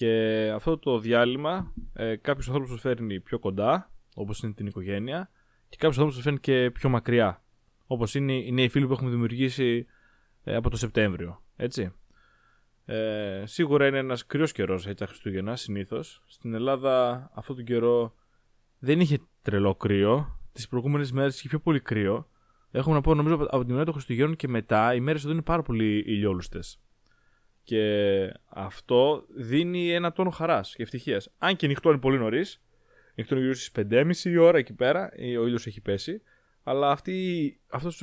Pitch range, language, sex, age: 115-145 Hz, Greek, male, 20-39